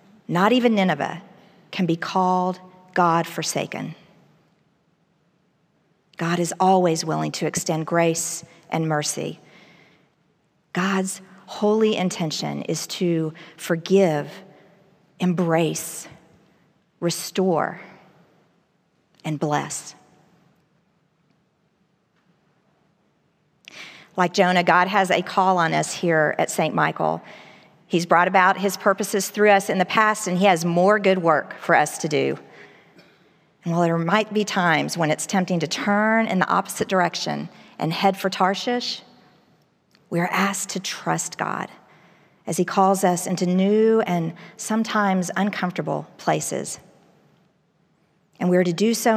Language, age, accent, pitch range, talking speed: English, 50-69, American, 165-195 Hz, 120 wpm